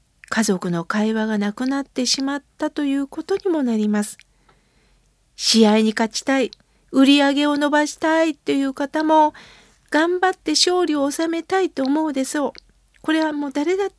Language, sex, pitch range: Japanese, female, 235-320 Hz